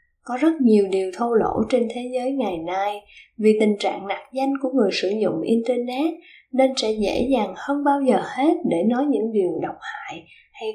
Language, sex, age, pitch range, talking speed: Vietnamese, female, 10-29, 220-285 Hz, 200 wpm